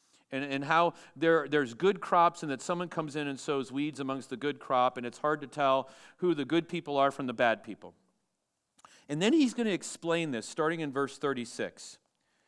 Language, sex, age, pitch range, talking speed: English, male, 40-59, 155-210 Hz, 210 wpm